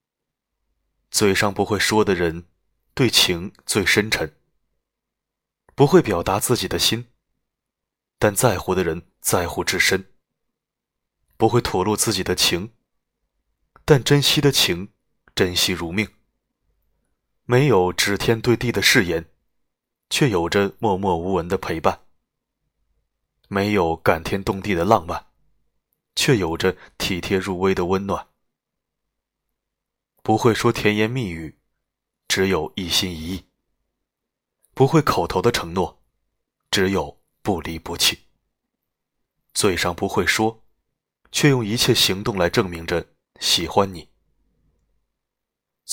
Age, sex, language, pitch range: 20-39, male, Chinese, 90-115 Hz